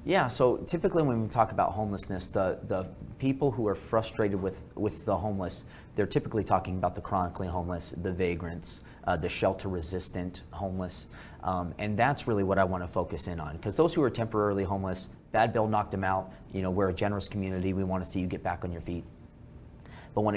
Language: English